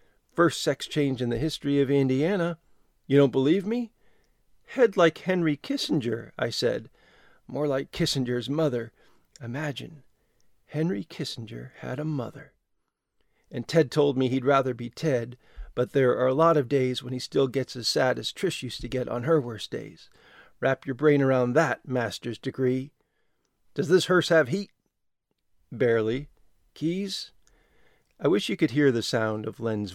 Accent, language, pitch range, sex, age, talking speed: American, English, 120-150 Hz, male, 40-59, 160 wpm